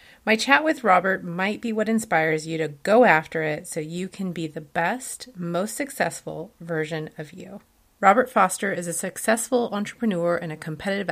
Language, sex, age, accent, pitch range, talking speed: English, female, 30-49, American, 160-220 Hz, 180 wpm